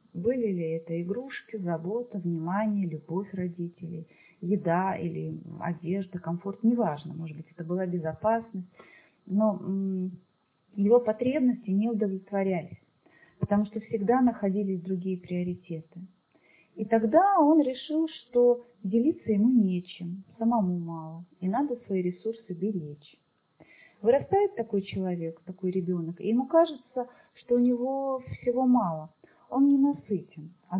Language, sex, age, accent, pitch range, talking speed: Russian, female, 30-49, native, 175-230 Hz, 120 wpm